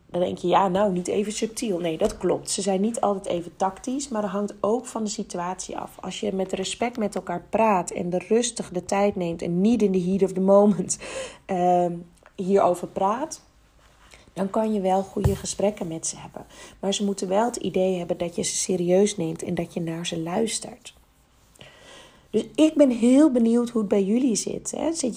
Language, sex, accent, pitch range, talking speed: Dutch, female, Dutch, 180-225 Hz, 210 wpm